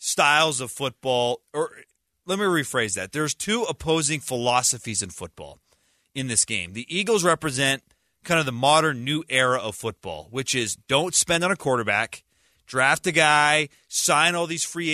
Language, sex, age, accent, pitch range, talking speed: English, male, 30-49, American, 120-165 Hz, 170 wpm